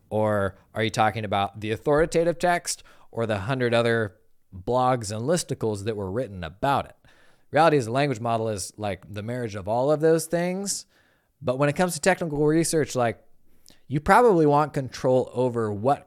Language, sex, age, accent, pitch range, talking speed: English, male, 20-39, American, 105-165 Hz, 180 wpm